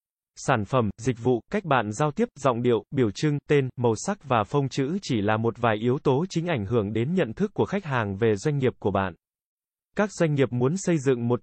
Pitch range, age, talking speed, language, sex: 120-155 Hz, 20-39, 235 wpm, Vietnamese, male